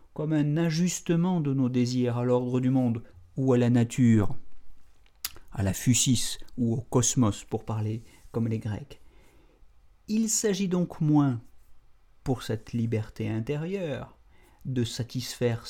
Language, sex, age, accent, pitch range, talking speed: French, male, 50-69, French, 115-160 Hz, 135 wpm